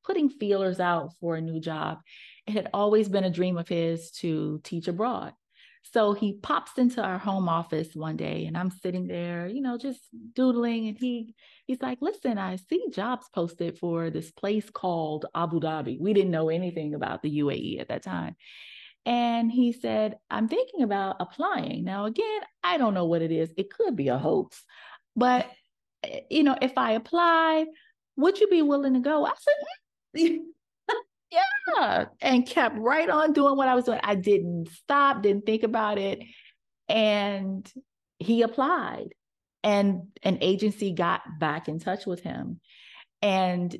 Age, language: 30-49, English